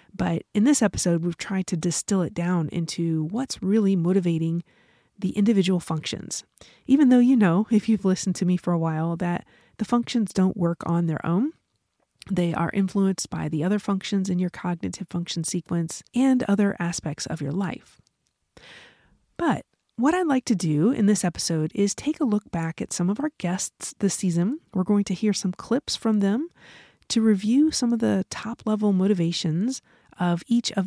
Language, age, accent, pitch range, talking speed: English, 30-49, American, 175-215 Hz, 185 wpm